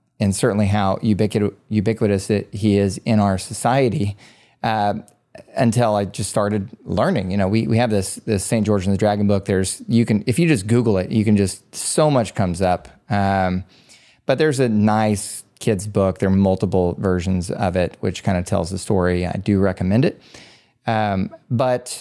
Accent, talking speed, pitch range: American, 190 wpm, 100-120 Hz